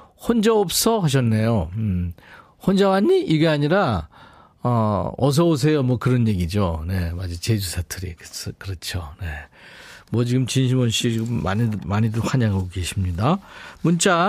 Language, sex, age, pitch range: Korean, male, 40-59, 115-175 Hz